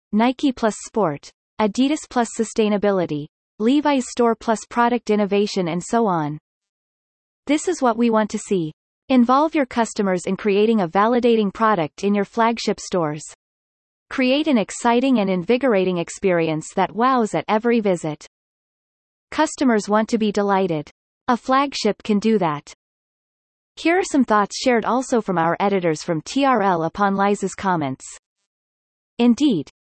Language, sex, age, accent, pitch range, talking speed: English, female, 30-49, American, 185-240 Hz, 140 wpm